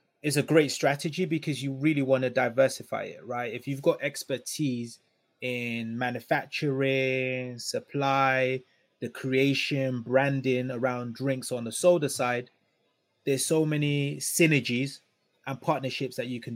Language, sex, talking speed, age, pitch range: English, male, 135 wpm, 20-39, 125-140 Hz